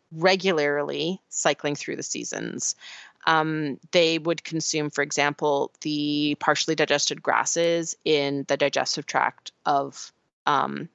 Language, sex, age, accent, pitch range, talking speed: English, female, 30-49, American, 150-190 Hz, 115 wpm